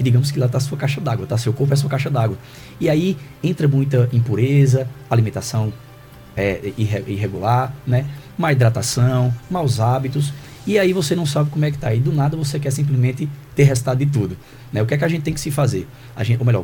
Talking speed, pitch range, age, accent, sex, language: 220 wpm, 120-150 Hz, 20-39, Brazilian, male, Portuguese